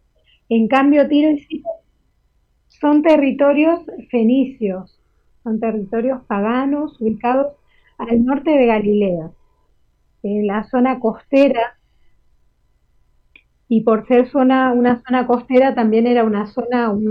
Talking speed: 110 wpm